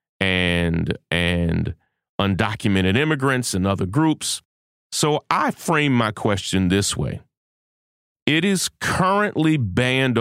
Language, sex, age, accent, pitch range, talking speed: English, male, 30-49, American, 95-125 Hz, 105 wpm